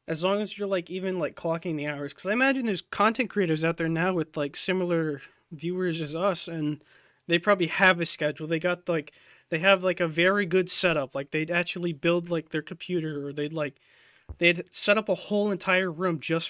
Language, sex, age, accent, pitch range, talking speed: English, male, 20-39, American, 155-195 Hz, 215 wpm